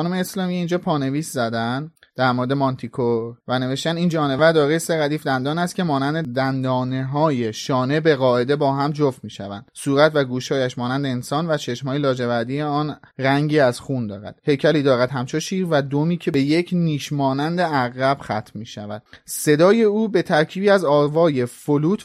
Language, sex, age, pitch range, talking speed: Persian, male, 30-49, 125-155 Hz, 165 wpm